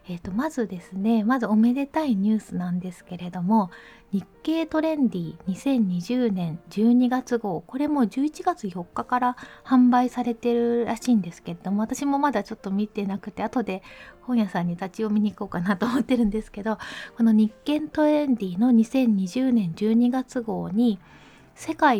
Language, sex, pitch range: Japanese, female, 190-245 Hz